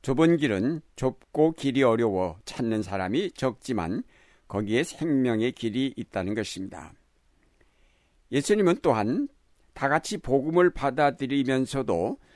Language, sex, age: Korean, male, 60-79